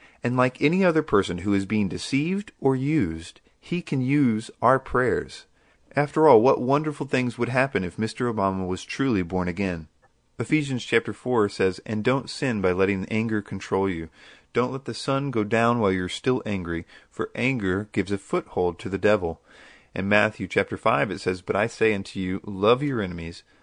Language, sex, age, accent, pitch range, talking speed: English, male, 40-59, American, 95-135 Hz, 190 wpm